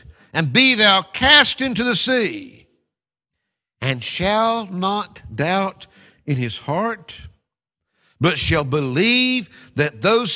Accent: American